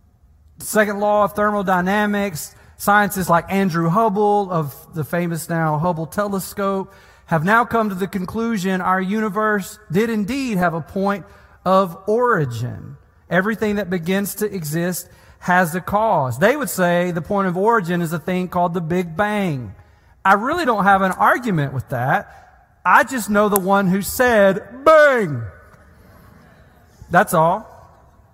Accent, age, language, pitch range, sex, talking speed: American, 40-59, English, 140-195 Hz, male, 145 wpm